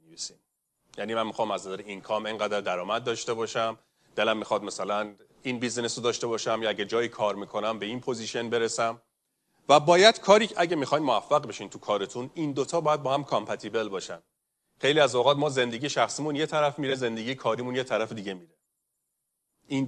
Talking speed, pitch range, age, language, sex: 180 wpm, 110-140 Hz, 30-49, Persian, male